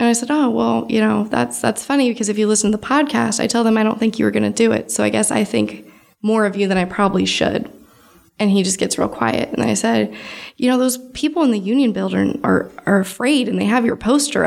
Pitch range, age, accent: 210-270 Hz, 20-39, American